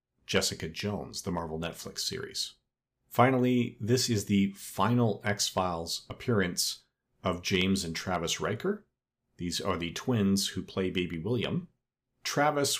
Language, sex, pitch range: English, male, 90-115 Hz